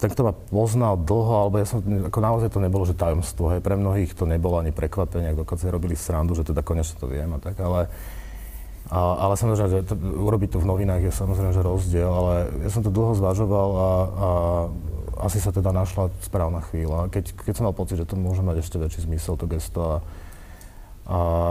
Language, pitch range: Slovak, 80-95 Hz